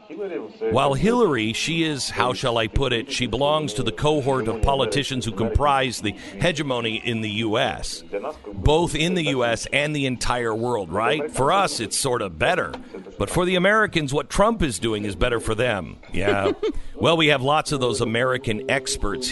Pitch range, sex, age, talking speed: 110-145 Hz, male, 50-69, 185 wpm